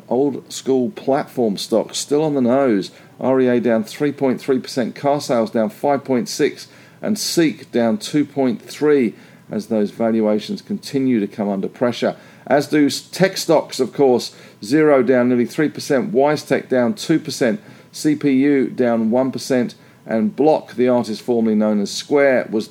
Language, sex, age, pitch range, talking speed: English, male, 50-69, 115-145 Hz, 135 wpm